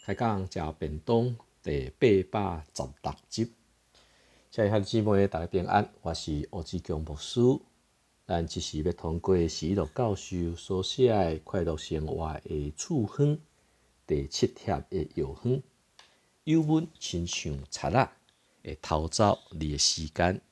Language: Chinese